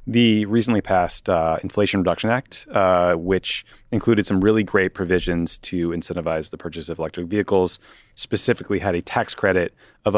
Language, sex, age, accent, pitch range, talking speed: English, male, 30-49, American, 85-105 Hz, 160 wpm